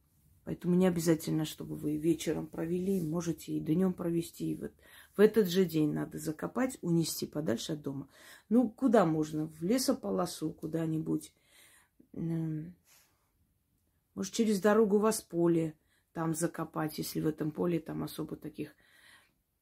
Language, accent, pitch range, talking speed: Russian, native, 155-195 Hz, 135 wpm